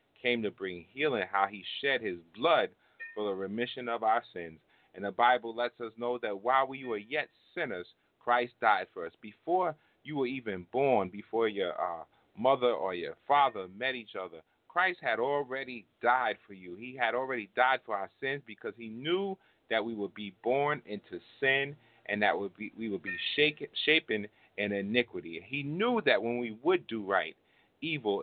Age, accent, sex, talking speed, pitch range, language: 30-49, American, male, 185 wpm, 105-130 Hz, English